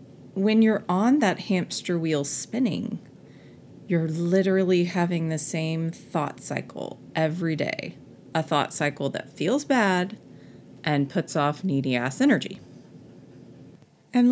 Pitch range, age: 155-215 Hz, 30-49